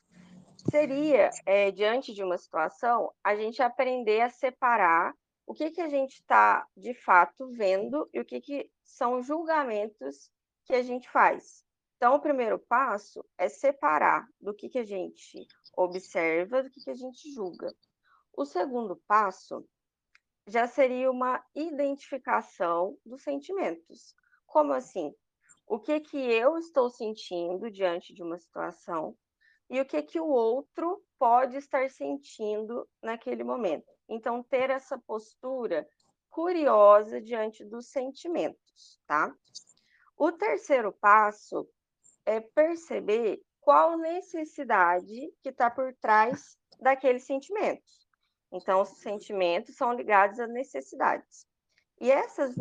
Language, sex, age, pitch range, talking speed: Portuguese, female, 20-39, 200-285 Hz, 125 wpm